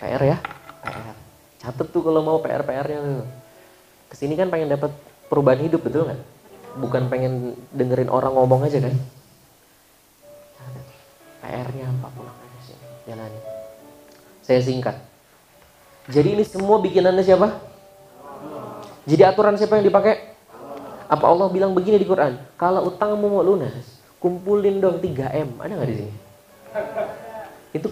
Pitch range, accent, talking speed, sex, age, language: 135-200 Hz, native, 125 wpm, male, 20-39, Indonesian